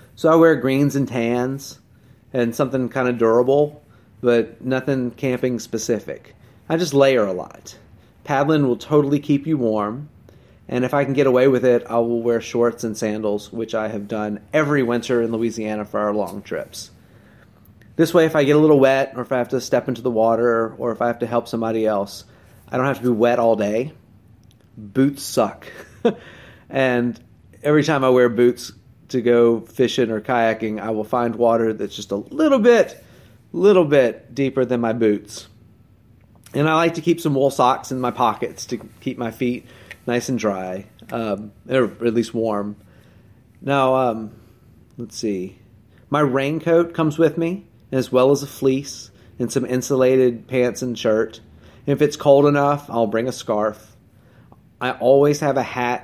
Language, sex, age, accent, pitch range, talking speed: English, male, 30-49, American, 110-135 Hz, 180 wpm